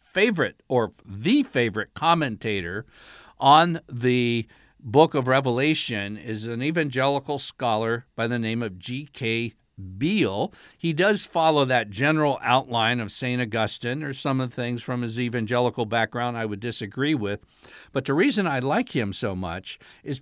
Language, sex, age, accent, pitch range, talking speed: English, male, 50-69, American, 120-155 Hz, 150 wpm